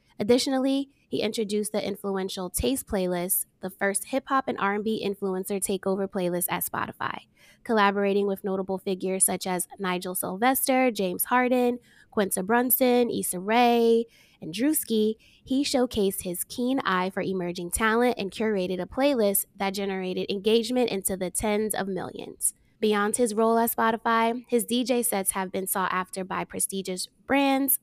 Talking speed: 145 wpm